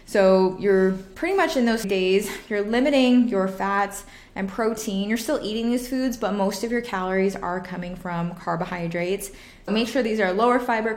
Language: English